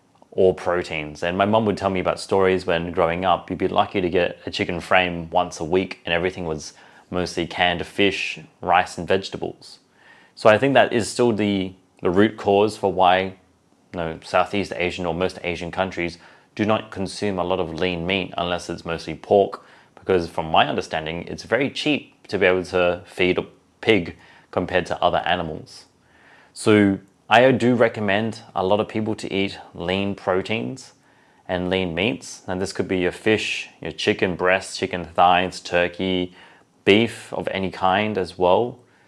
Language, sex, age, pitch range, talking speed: English, male, 30-49, 90-100 Hz, 175 wpm